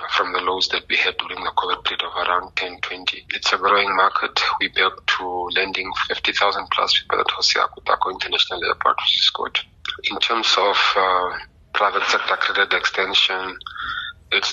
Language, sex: English, male